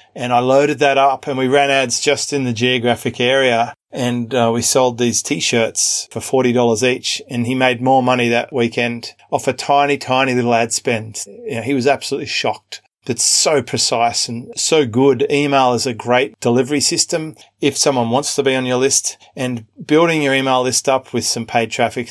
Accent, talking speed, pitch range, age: Australian, 195 wpm, 120-140 Hz, 30-49